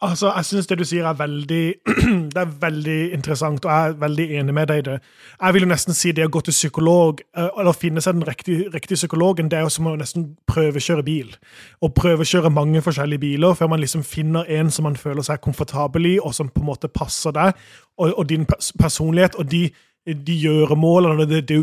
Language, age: English, 30-49